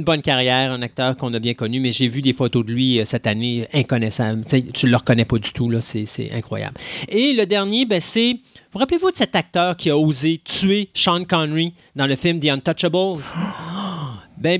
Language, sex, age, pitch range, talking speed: French, male, 30-49, 130-190 Hz, 220 wpm